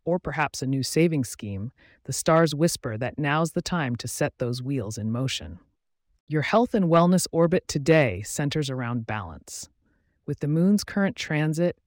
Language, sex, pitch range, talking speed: English, female, 125-165 Hz, 165 wpm